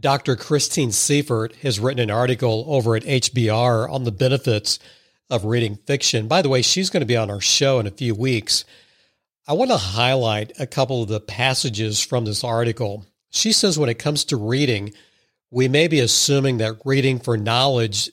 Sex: male